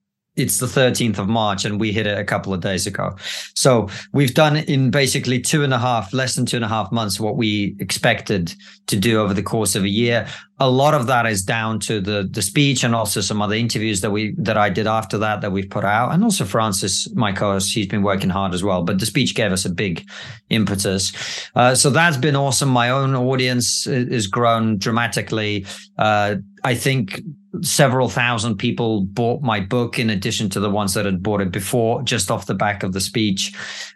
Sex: male